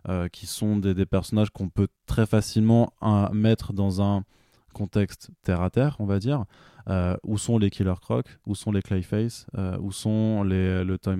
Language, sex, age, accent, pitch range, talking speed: French, male, 20-39, French, 90-110 Hz, 200 wpm